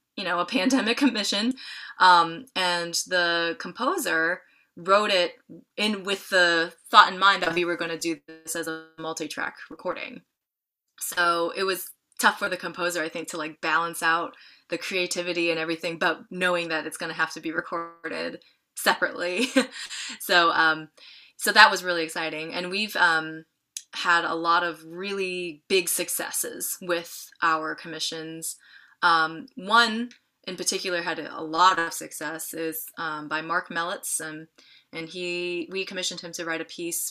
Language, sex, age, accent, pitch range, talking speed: English, female, 20-39, American, 165-190 Hz, 160 wpm